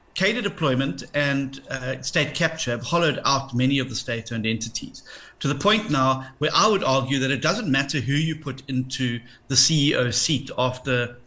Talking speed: 180 wpm